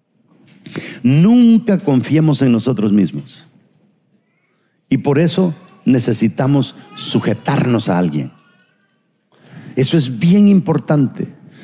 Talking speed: 80 wpm